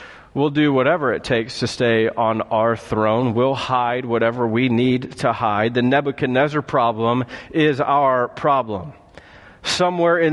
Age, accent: 40-59, American